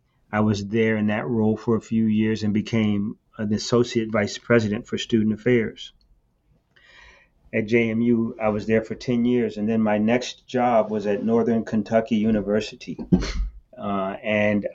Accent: American